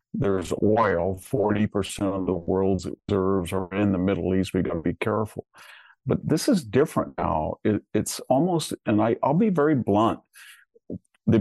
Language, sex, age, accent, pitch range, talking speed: English, male, 50-69, American, 95-115 Hz, 160 wpm